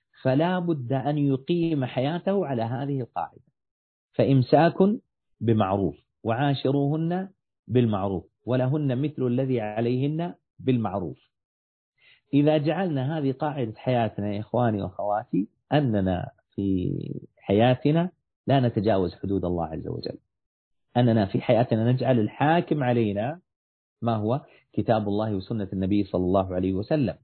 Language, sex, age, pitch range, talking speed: Arabic, male, 40-59, 100-135 Hz, 110 wpm